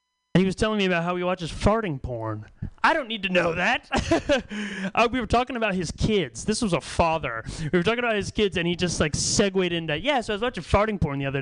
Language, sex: English, male